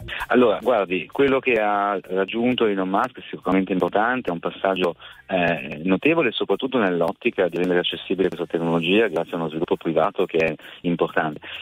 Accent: native